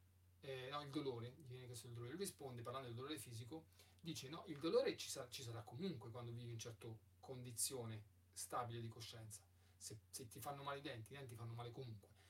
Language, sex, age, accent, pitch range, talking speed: Italian, male, 40-59, native, 105-150 Hz, 200 wpm